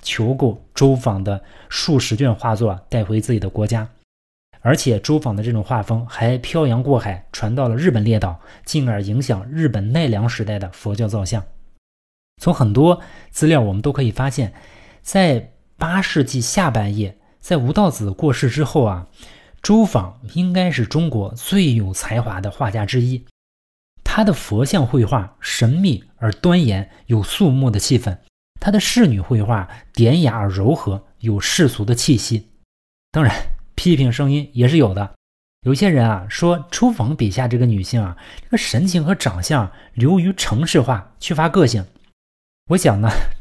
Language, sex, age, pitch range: Chinese, male, 20-39, 105-145 Hz